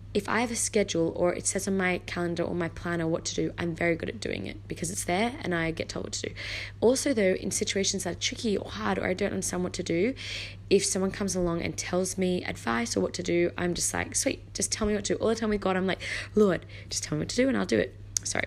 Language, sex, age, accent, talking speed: English, female, 20-39, Australian, 290 wpm